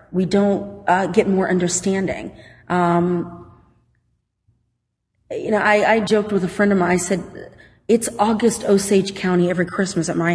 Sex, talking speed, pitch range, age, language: female, 155 wpm, 175-205 Hz, 30-49, English